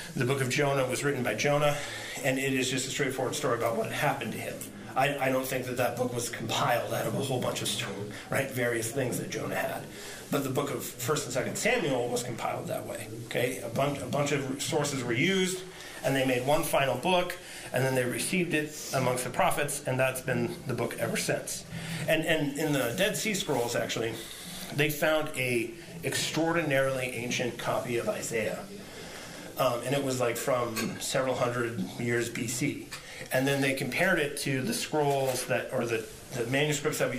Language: English